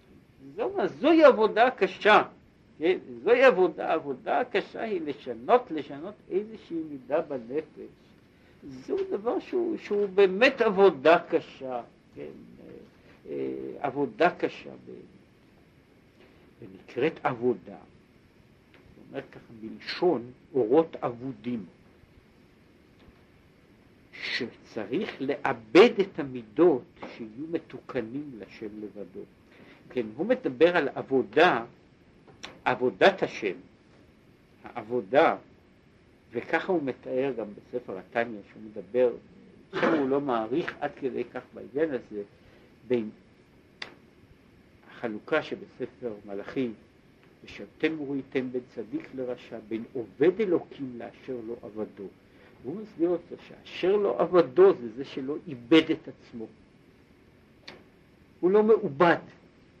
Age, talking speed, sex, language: 60-79, 100 wpm, male, Hebrew